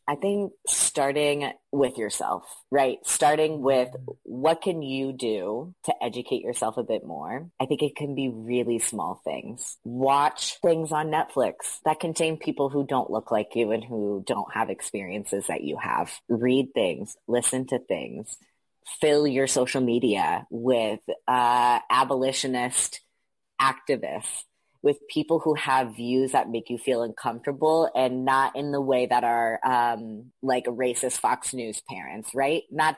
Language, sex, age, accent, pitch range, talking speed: English, female, 30-49, American, 125-155 Hz, 155 wpm